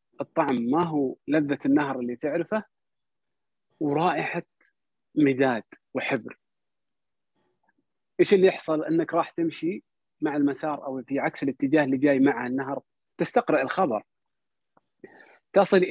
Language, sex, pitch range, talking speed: Arabic, male, 135-185 Hz, 110 wpm